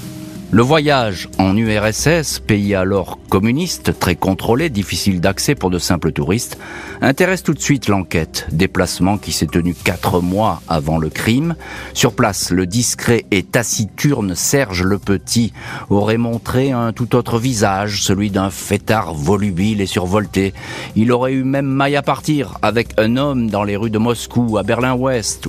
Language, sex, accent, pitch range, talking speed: French, male, French, 90-115 Hz, 160 wpm